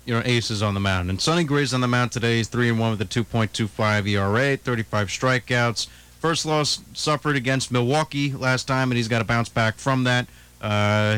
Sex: male